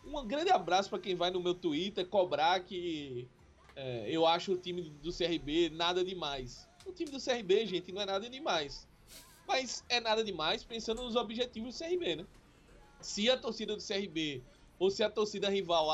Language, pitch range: Portuguese, 170-215 Hz